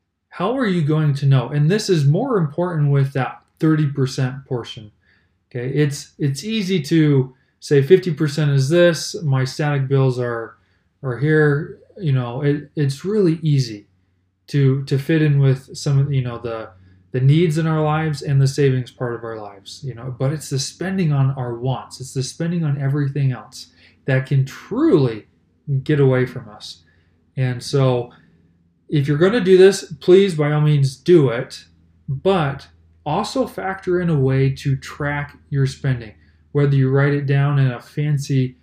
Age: 20-39